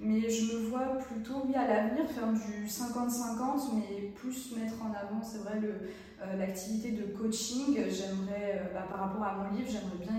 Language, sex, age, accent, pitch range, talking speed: French, female, 20-39, French, 205-245 Hz, 195 wpm